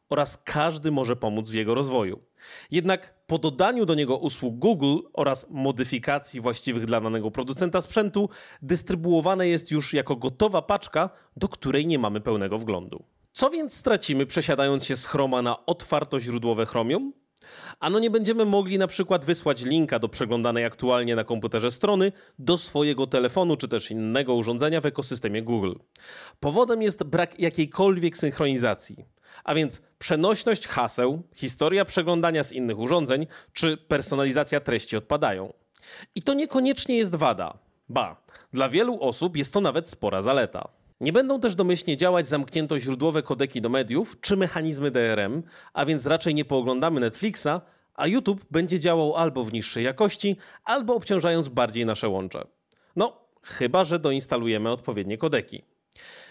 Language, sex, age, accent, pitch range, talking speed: Polish, male, 30-49, native, 125-185 Hz, 145 wpm